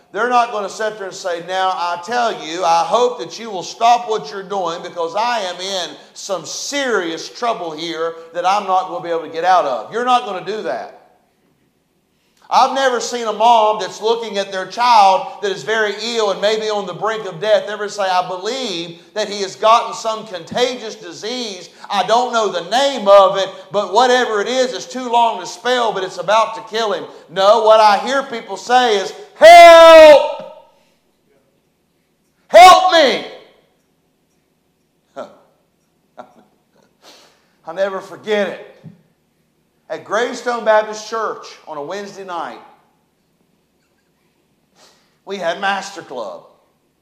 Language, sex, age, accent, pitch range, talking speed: English, male, 40-59, American, 190-250 Hz, 160 wpm